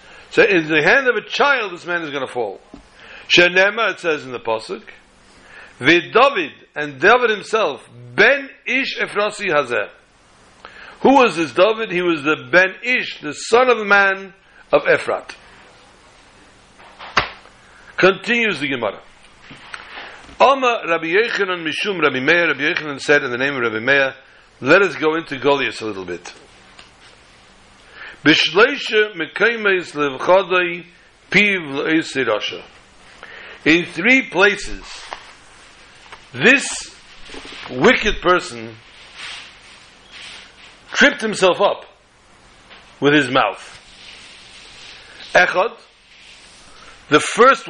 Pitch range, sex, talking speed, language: 150-210 Hz, male, 100 wpm, English